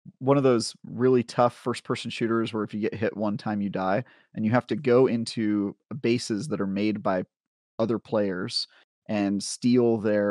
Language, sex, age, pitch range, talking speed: English, male, 30-49, 100-120 Hz, 190 wpm